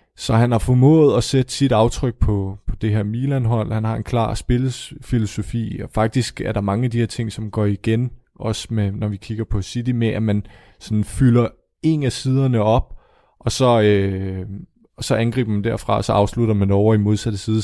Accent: native